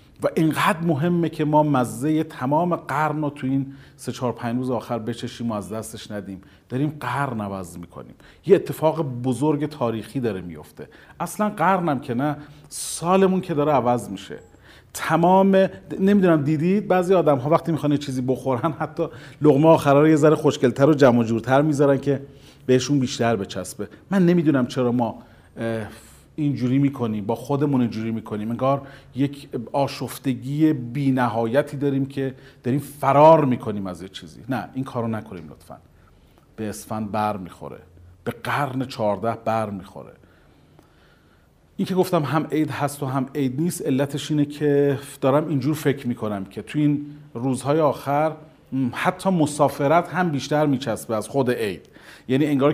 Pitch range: 120-150 Hz